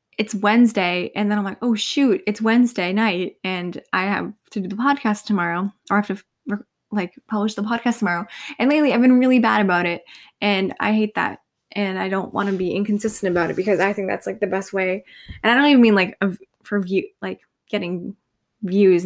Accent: American